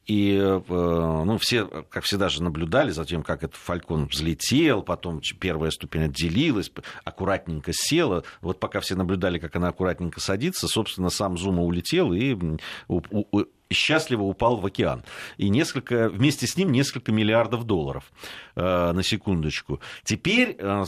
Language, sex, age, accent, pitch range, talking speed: Russian, male, 50-69, native, 90-140 Hz, 140 wpm